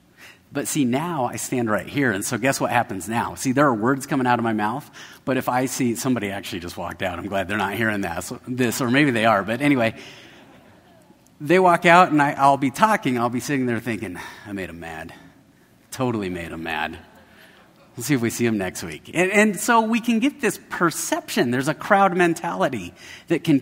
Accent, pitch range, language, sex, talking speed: American, 115-160 Hz, English, male, 215 wpm